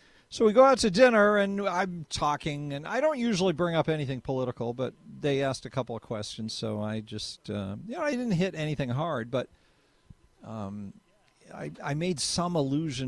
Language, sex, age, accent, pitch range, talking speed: English, male, 50-69, American, 120-195 Hz, 195 wpm